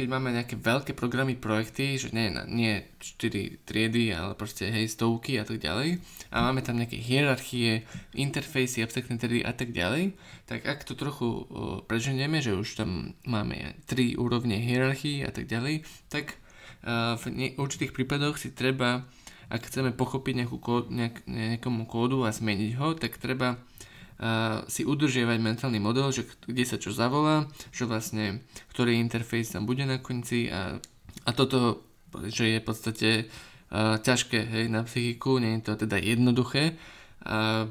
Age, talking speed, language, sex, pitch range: 20-39, 155 wpm, Slovak, male, 110-130 Hz